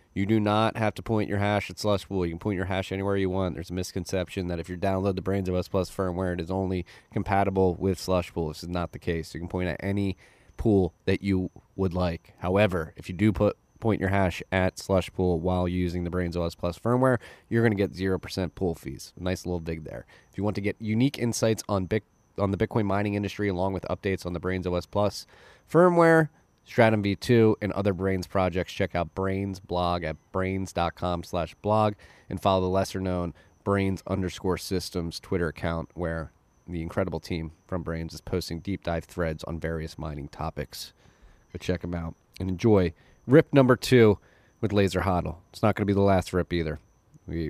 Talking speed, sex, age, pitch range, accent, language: 205 wpm, male, 20-39, 85-100 Hz, American, English